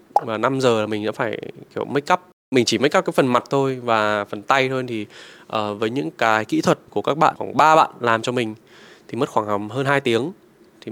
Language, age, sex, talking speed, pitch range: Vietnamese, 20-39, male, 245 wpm, 110-145 Hz